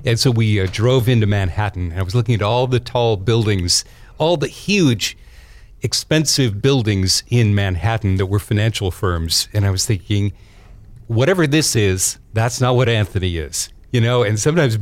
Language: English